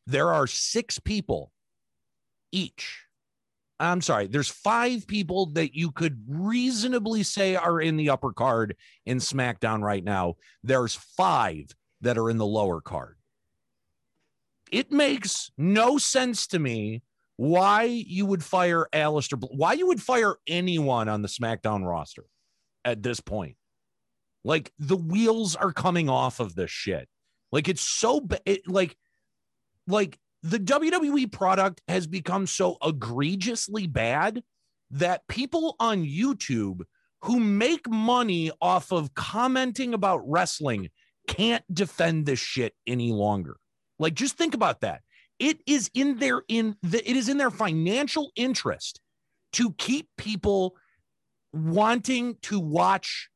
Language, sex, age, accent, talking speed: English, male, 40-59, American, 135 wpm